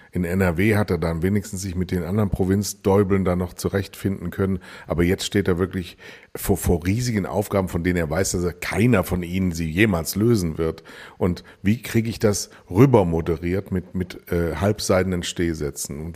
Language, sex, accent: German, male, German